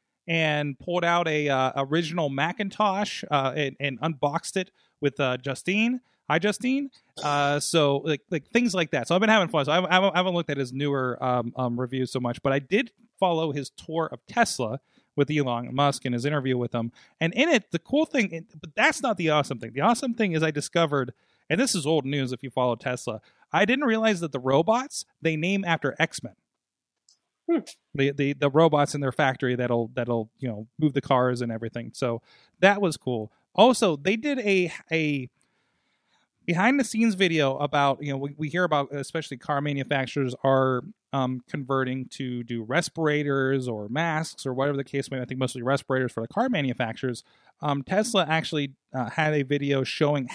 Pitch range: 130-175 Hz